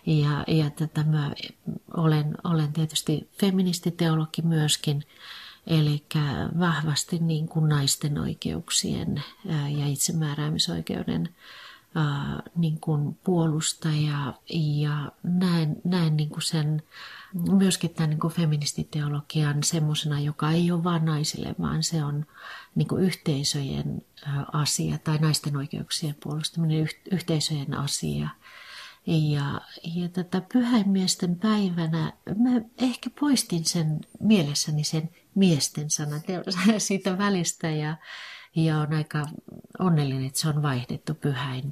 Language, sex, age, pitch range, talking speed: Finnish, female, 30-49, 150-175 Hz, 100 wpm